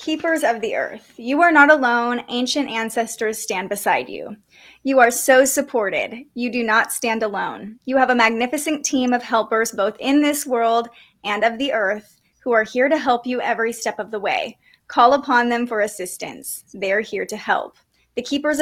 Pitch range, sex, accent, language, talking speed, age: 220-265 Hz, female, American, English, 190 wpm, 20-39